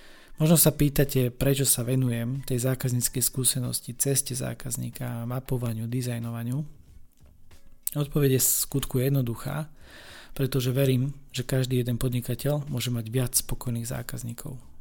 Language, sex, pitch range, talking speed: Slovak, male, 120-140 Hz, 115 wpm